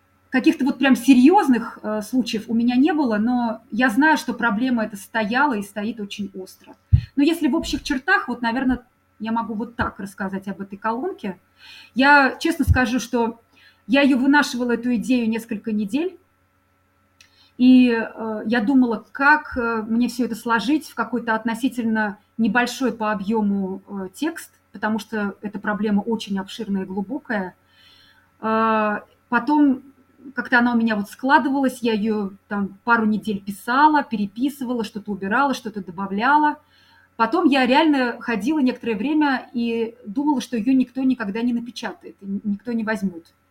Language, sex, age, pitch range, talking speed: Russian, female, 30-49, 210-260 Hz, 145 wpm